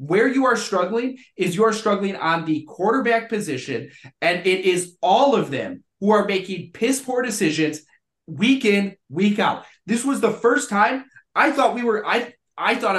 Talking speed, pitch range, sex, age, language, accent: 180 wpm, 175-225 Hz, male, 30-49, English, American